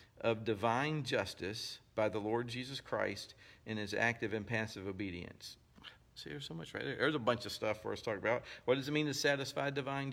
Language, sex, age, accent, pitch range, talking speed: English, male, 50-69, American, 100-120 Hz, 220 wpm